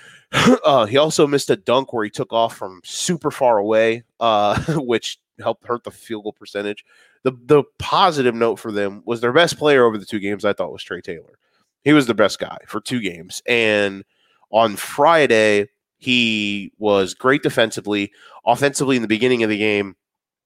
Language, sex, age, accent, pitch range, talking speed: English, male, 30-49, American, 105-135 Hz, 185 wpm